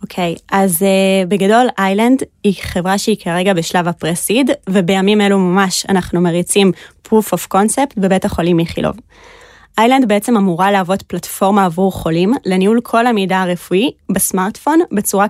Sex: female